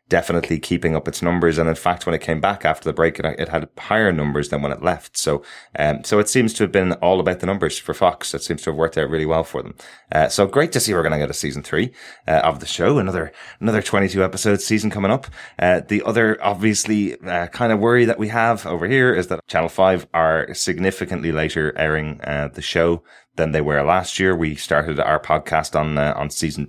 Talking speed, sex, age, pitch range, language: 245 wpm, male, 20-39, 75-95 Hz, English